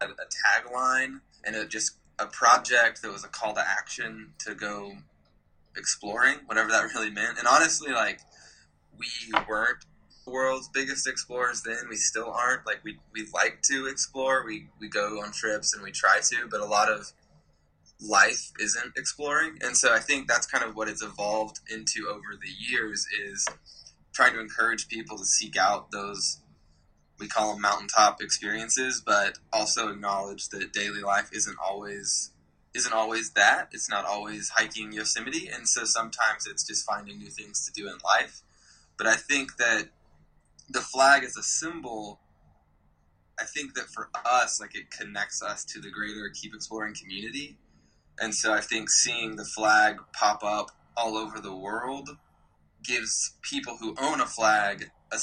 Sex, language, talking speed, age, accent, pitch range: male, English, 165 wpm, 20-39, American, 95-115 Hz